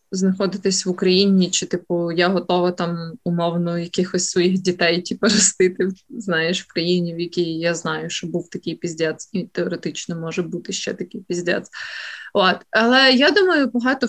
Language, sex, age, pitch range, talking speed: Ukrainian, female, 20-39, 180-215 Hz, 155 wpm